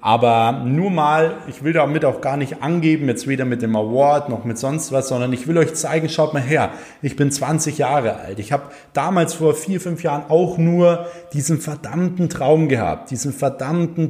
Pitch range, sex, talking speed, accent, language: 125-150 Hz, male, 200 wpm, German, German